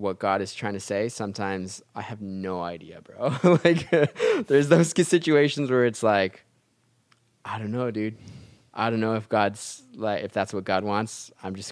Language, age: English, 20-39